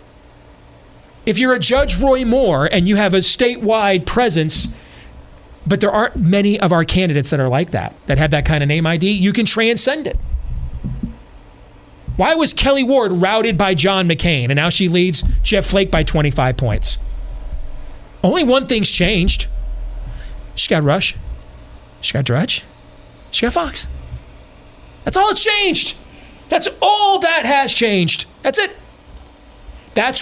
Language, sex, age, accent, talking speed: English, male, 30-49, American, 150 wpm